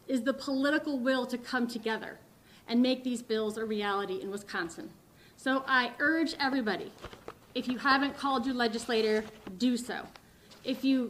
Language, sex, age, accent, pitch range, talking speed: English, female, 30-49, American, 230-275 Hz, 155 wpm